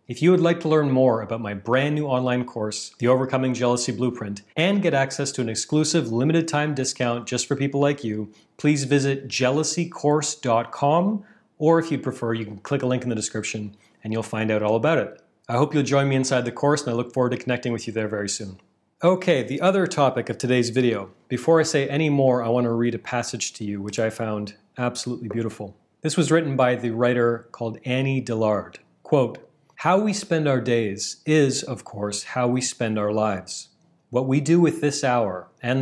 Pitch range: 115-145 Hz